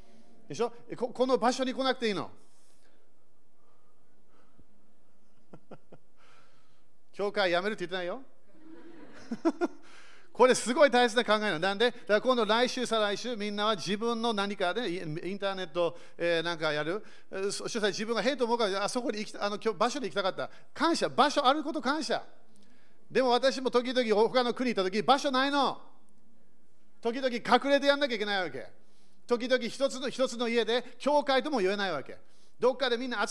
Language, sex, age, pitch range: Japanese, male, 40-59, 195-255 Hz